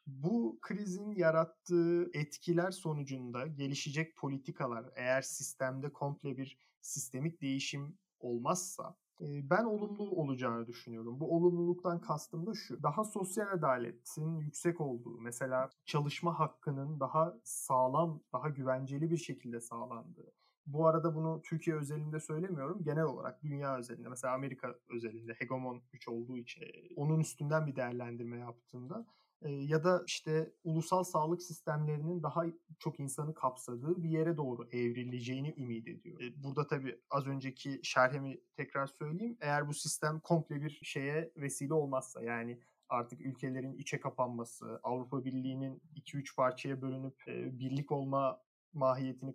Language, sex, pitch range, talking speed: Turkish, male, 130-160 Hz, 130 wpm